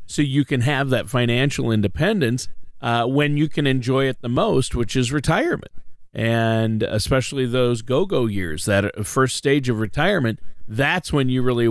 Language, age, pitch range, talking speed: English, 40-59, 120-150 Hz, 165 wpm